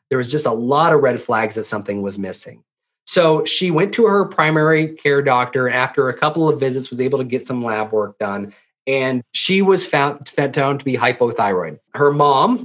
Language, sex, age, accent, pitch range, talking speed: English, male, 30-49, American, 125-155 Hz, 200 wpm